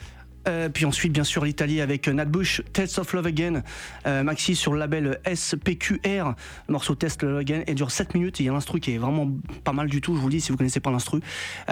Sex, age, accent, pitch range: male, 30-49, French, 145-180 Hz